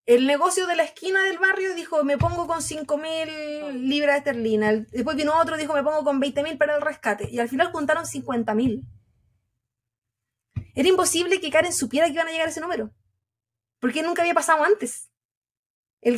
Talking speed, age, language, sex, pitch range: 180 wpm, 20-39, Spanish, female, 220-330 Hz